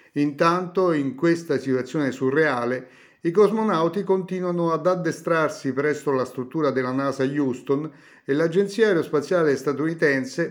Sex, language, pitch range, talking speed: male, Italian, 130-165 Hz, 115 wpm